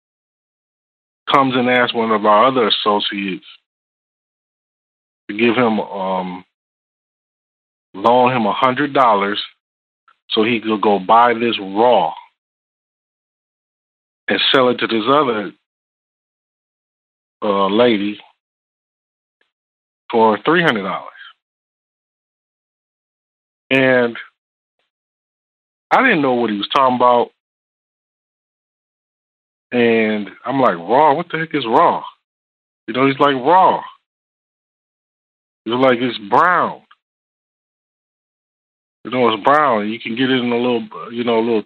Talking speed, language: 115 wpm, English